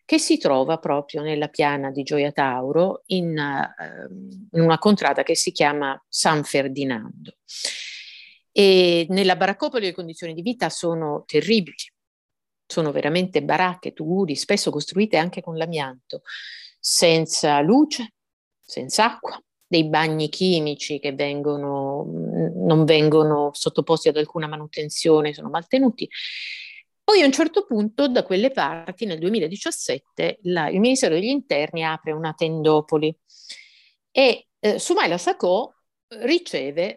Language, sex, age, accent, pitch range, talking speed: Italian, female, 50-69, native, 155-225 Hz, 125 wpm